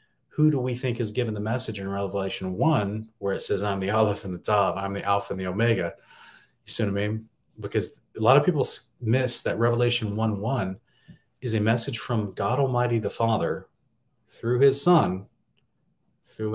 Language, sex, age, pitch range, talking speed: English, male, 30-49, 105-125 Hz, 190 wpm